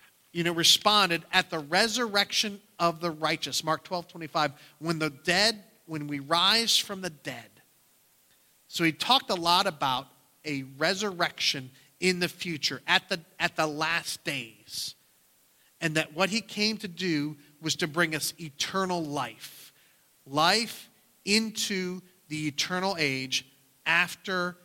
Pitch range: 140-180 Hz